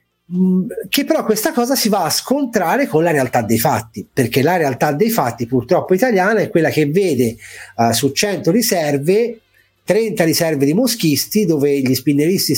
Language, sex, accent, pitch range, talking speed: Italian, male, native, 140-195 Hz, 165 wpm